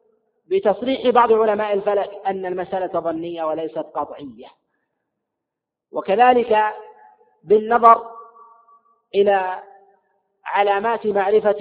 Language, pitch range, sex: Arabic, 175-225 Hz, male